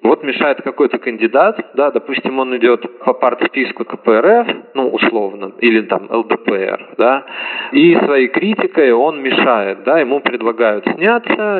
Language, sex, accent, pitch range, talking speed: Russian, male, native, 110-130 Hz, 135 wpm